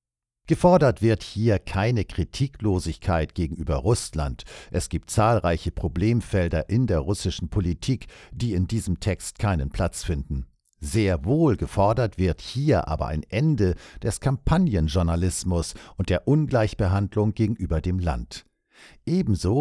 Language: Dutch